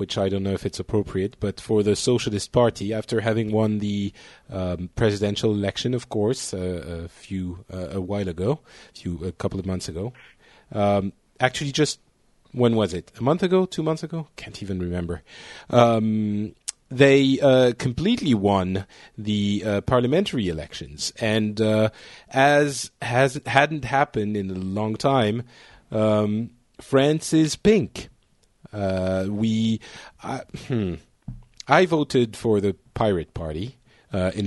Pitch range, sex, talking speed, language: 100-130 Hz, male, 150 wpm, English